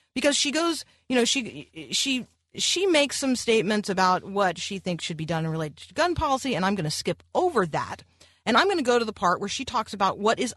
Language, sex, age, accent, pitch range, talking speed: English, female, 40-59, American, 170-240 Hz, 250 wpm